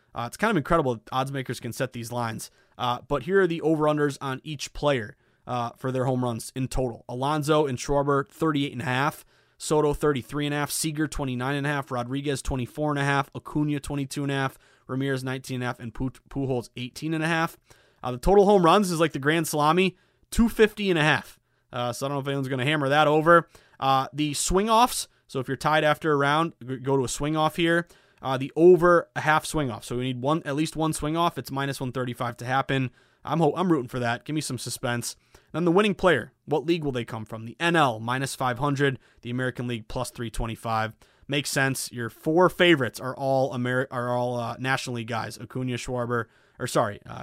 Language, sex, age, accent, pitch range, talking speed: English, male, 20-39, American, 120-150 Hz, 225 wpm